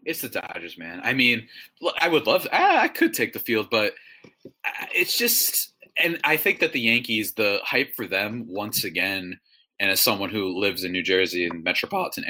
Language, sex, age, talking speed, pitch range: English, male, 30-49, 200 wpm, 105-150 Hz